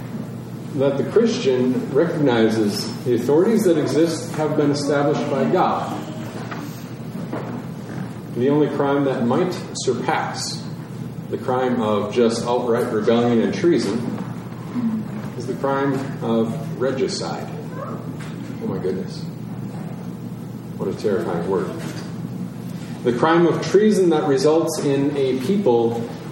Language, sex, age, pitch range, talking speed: English, male, 40-59, 135-180 Hz, 110 wpm